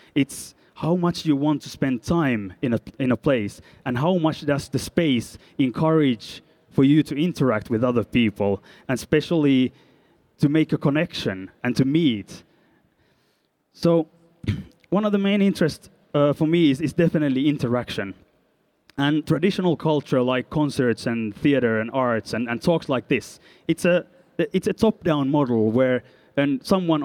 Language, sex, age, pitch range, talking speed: French, male, 20-39, 125-160 Hz, 160 wpm